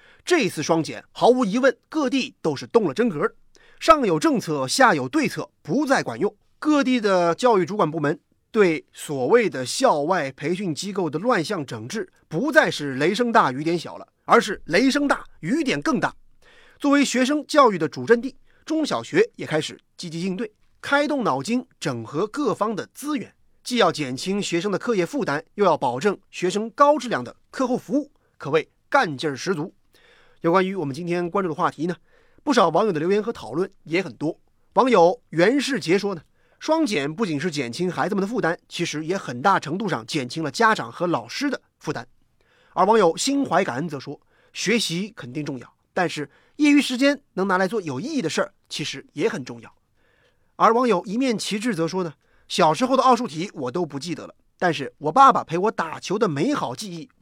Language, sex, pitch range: Chinese, male, 160-260 Hz